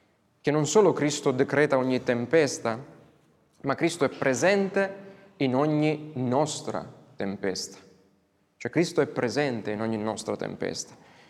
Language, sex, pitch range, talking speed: Italian, male, 140-175 Hz, 120 wpm